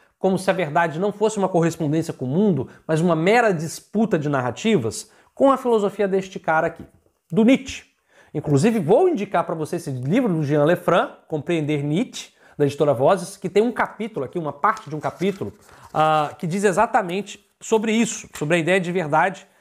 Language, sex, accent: Portuguese, male, Brazilian